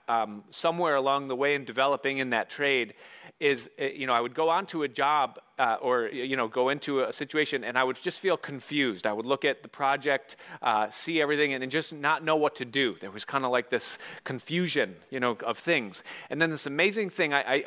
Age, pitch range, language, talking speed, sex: 30-49, 140-185 Hz, English, 230 wpm, male